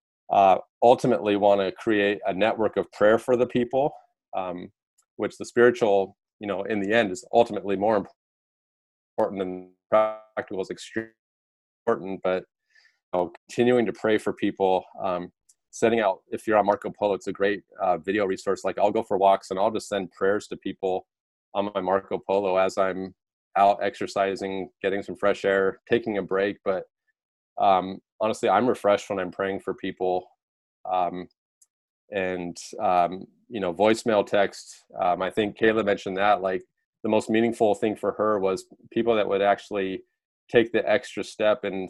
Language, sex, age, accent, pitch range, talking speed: English, male, 30-49, American, 95-110 Hz, 170 wpm